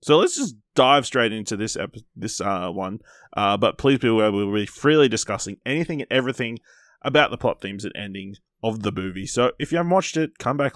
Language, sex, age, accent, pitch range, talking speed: English, male, 20-39, Australian, 105-140 Hz, 230 wpm